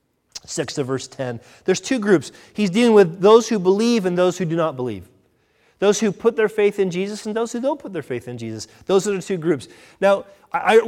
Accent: American